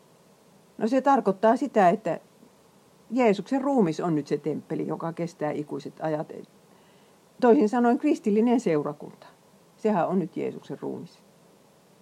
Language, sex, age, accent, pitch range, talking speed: Finnish, female, 50-69, native, 165-225 Hz, 120 wpm